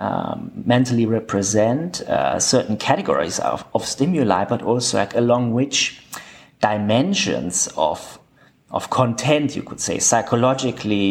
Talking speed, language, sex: 120 wpm, English, male